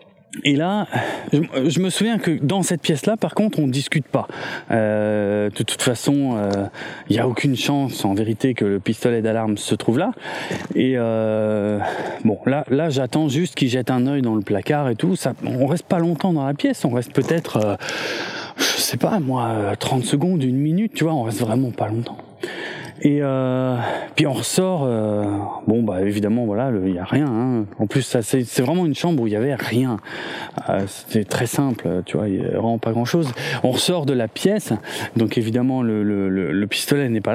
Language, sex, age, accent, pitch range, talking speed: French, male, 20-39, French, 115-155 Hz, 205 wpm